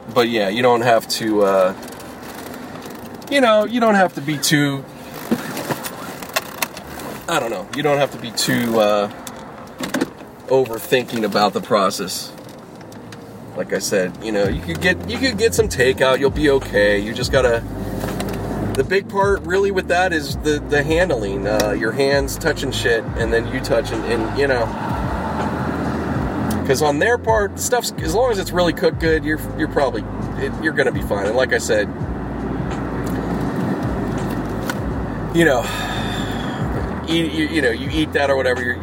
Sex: male